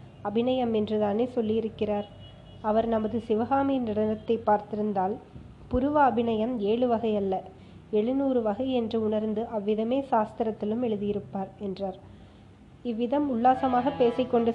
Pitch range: 210-245 Hz